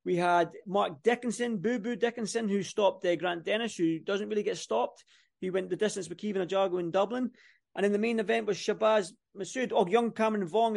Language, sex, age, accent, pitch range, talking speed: English, male, 30-49, British, 170-210 Hz, 215 wpm